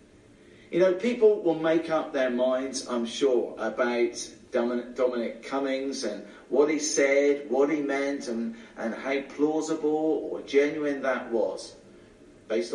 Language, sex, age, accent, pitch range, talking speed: English, male, 50-69, British, 135-210 Hz, 140 wpm